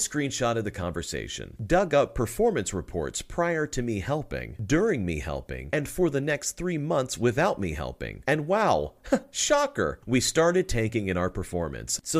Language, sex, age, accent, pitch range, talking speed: English, male, 40-59, American, 95-135 Hz, 165 wpm